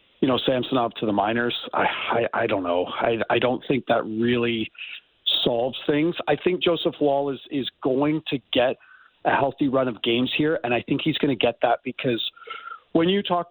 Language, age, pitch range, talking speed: English, 40-59, 125-155 Hz, 210 wpm